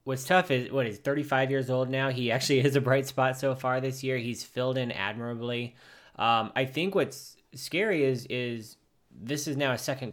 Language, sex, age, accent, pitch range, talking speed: English, male, 20-39, American, 110-135 Hz, 215 wpm